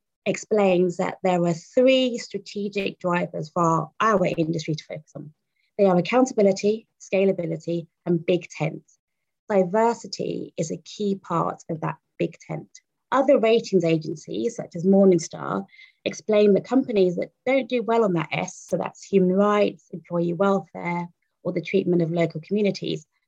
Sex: female